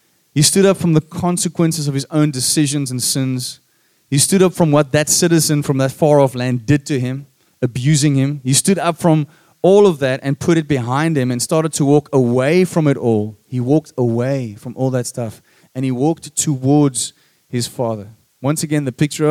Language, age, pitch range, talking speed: English, 30-49, 125-160 Hz, 205 wpm